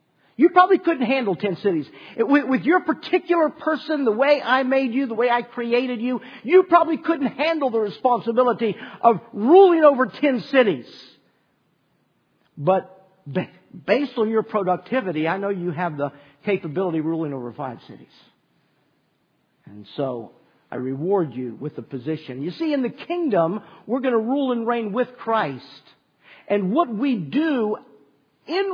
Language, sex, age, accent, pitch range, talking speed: English, male, 50-69, American, 160-265 Hz, 150 wpm